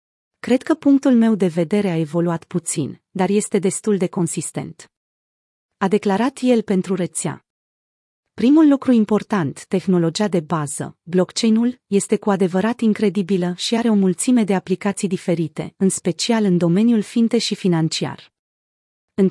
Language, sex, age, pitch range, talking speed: Romanian, female, 30-49, 175-225 Hz, 140 wpm